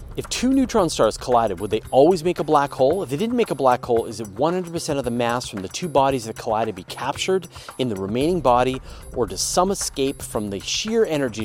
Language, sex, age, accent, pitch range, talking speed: English, male, 30-49, American, 120-170 Hz, 240 wpm